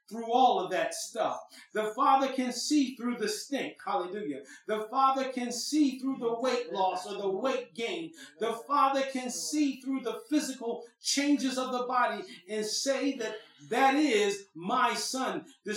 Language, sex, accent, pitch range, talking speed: English, male, American, 215-265 Hz, 165 wpm